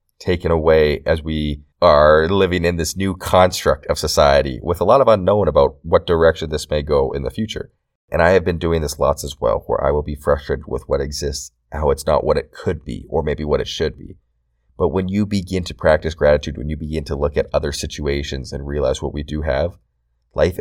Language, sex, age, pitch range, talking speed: English, male, 30-49, 70-85 Hz, 225 wpm